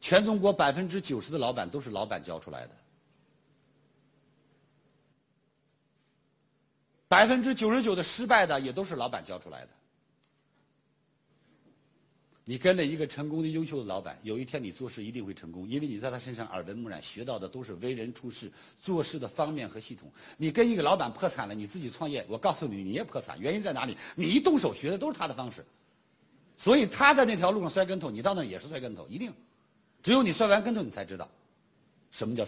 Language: Chinese